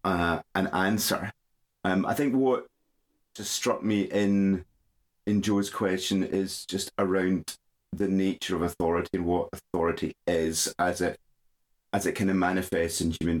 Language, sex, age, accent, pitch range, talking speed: English, male, 30-49, British, 80-100 Hz, 150 wpm